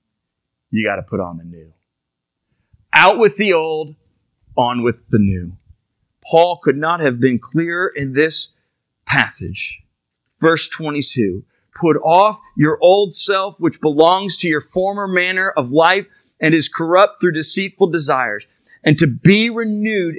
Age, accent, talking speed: 30-49, American, 145 wpm